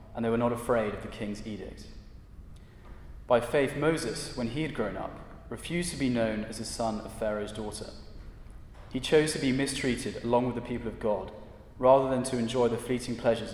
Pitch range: 105-125 Hz